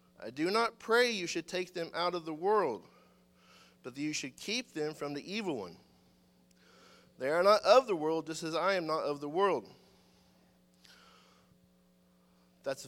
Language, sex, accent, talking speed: English, male, American, 170 wpm